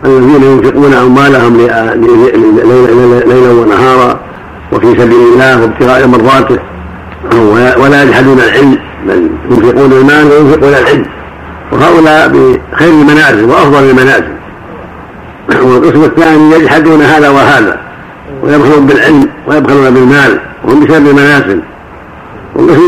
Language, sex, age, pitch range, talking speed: Arabic, male, 60-79, 130-155 Hz, 95 wpm